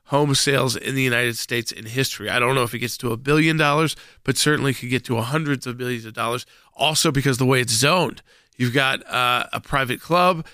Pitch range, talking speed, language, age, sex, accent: 125-150 Hz, 230 wpm, English, 40-59, male, American